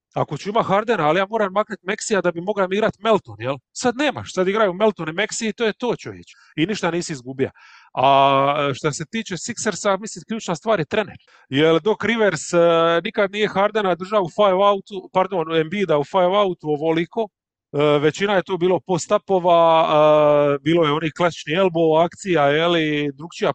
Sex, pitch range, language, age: male, 150-195 Hz, English, 30-49